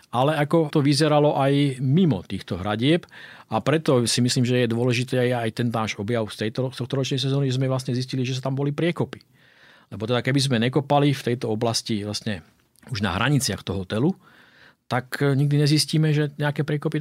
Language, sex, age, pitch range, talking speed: Slovak, male, 40-59, 110-135 Hz, 185 wpm